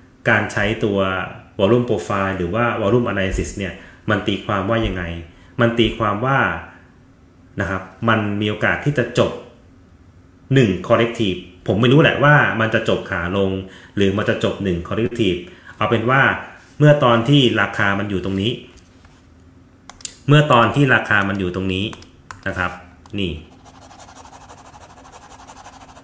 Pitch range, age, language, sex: 90-120 Hz, 30-49, Thai, male